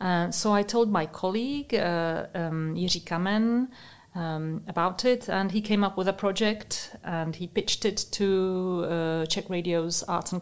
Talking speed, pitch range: 165 wpm, 170-200 Hz